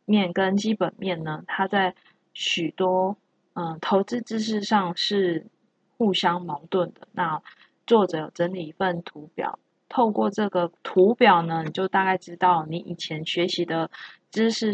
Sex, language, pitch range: female, Chinese, 175-210 Hz